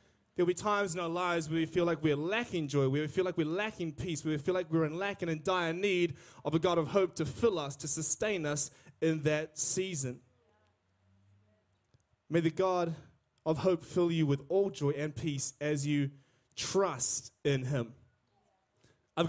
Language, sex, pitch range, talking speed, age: English, male, 155-210 Hz, 195 wpm, 20-39